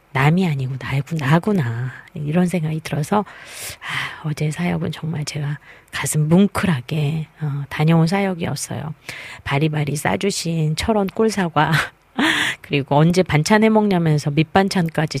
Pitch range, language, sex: 150-180 Hz, Korean, female